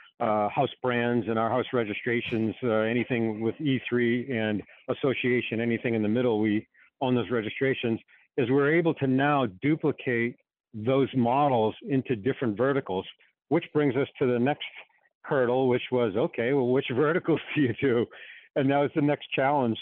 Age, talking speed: 50-69, 165 wpm